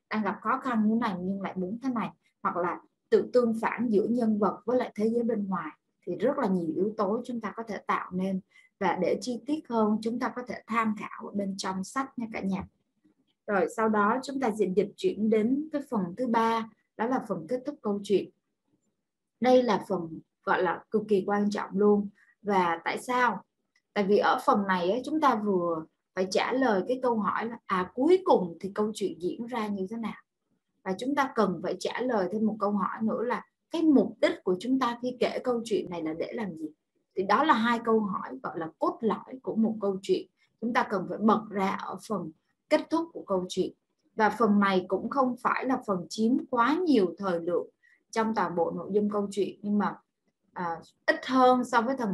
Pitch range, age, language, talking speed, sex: 195-245 Hz, 20-39, Vietnamese, 225 wpm, female